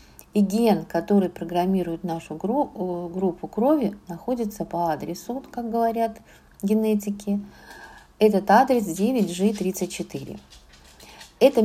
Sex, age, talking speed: female, 50-69, 90 wpm